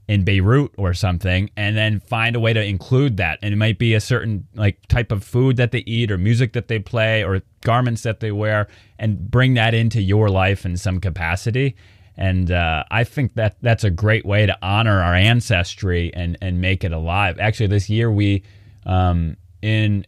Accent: American